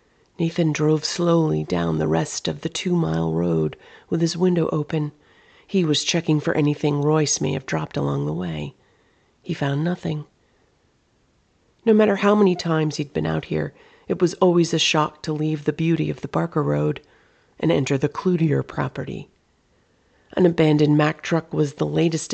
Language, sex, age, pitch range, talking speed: English, female, 40-59, 140-165 Hz, 170 wpm